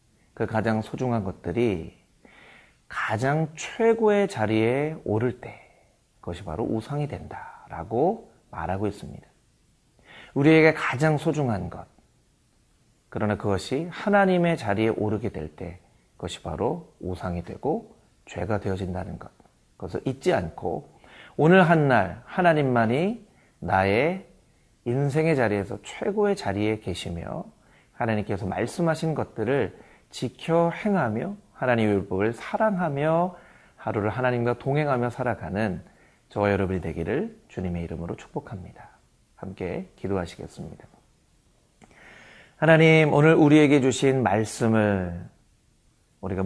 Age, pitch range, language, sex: 30-49, 100-155 Hz, Korean, male